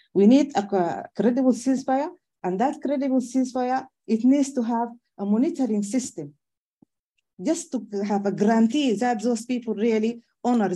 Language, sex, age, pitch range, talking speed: English, female, 40-59, 185-255 Hz, 145 wpm